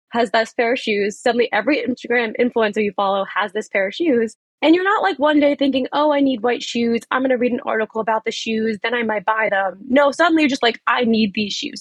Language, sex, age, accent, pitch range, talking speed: English, female, 20-39, American, 210-265 Hz, 260 wpm